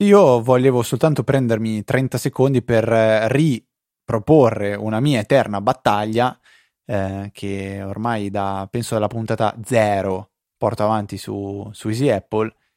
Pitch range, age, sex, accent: 105-135 Hz, 20-39, male, native